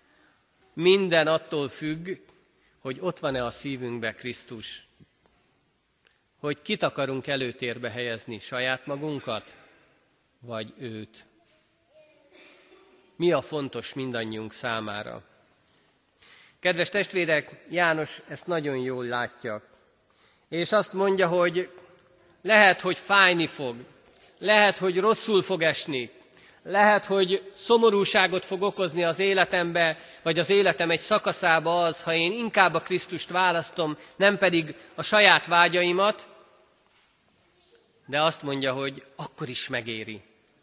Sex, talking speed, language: male, 110 wpm, Hungarian